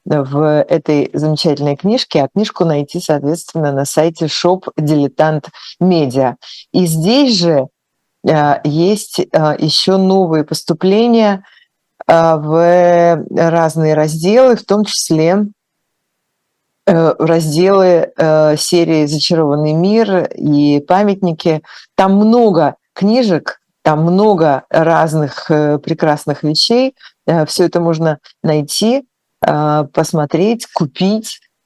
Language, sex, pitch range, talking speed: Russian, female, 150-195 Hz, 95 wpm